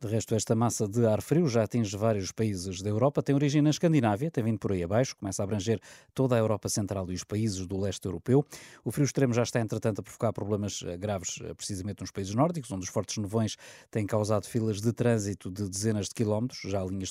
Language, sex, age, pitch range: Portuguese, male, 20-39, 100-130 Hz